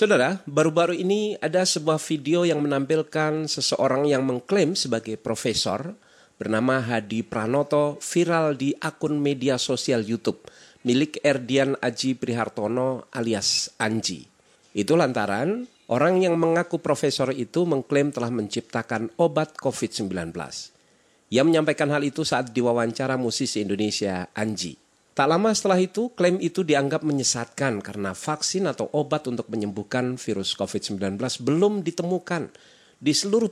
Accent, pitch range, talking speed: native, 115-160 Hz, 125 wpm